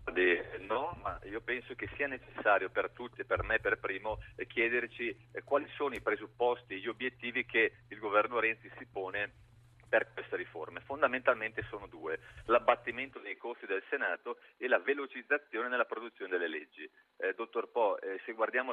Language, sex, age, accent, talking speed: Italian, male, 40-59, native, 165 wpm